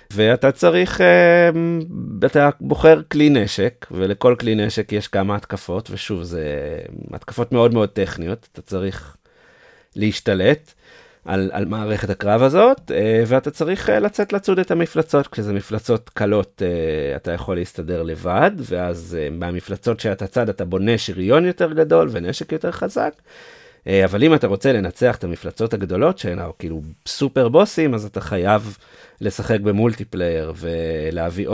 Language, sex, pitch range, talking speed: Hebrew, male, 95-125 Hz, 135 wpm